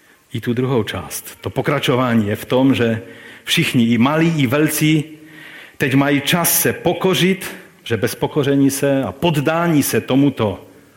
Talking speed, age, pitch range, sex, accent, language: 150 wpm, 40-59, 110-150 Hz, male, native, Czech